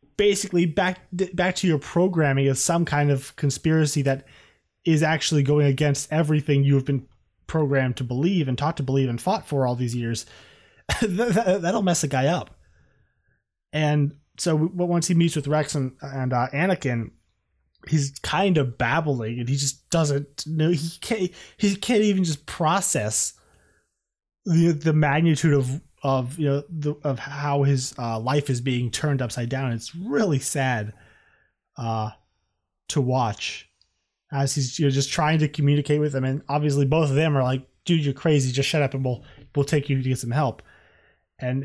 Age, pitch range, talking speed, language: 20-39, 130-160 Hz, 175 wpm, English